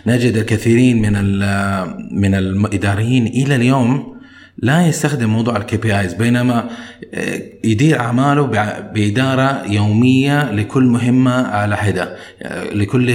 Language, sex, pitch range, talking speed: Arabic, male, 105-125 Hz, 105 wpm